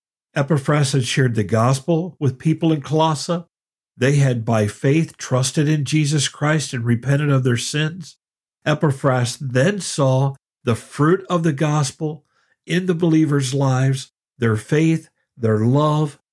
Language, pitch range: English, 125-160 Hz